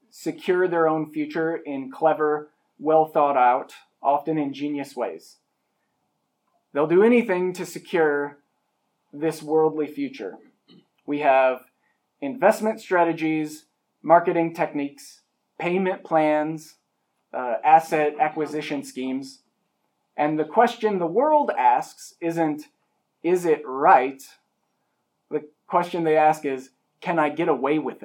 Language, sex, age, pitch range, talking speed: English, male, 30-49, 145-180 Hz, 105 wpm